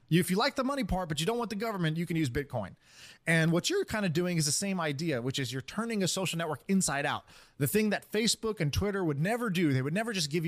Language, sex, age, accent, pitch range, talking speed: English, male, 20-39, American, 150-190 Hz, 280 wpm